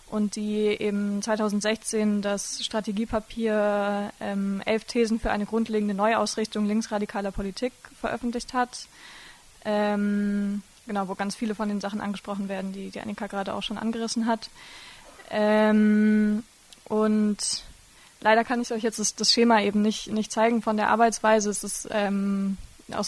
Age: 20-39